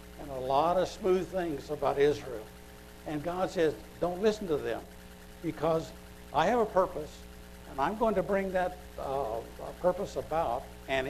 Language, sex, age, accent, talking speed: English, male, 60-79, American, 160 wpm